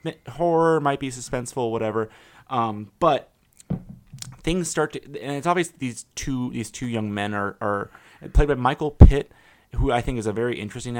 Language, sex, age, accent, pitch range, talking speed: English, male, 30-49, American, 110-145 Hz, 175 wpm